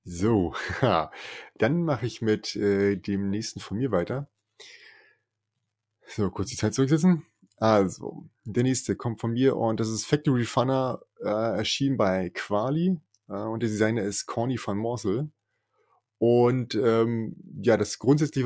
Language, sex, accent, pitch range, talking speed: German, male, German, 105-120 Hz, 135 wpm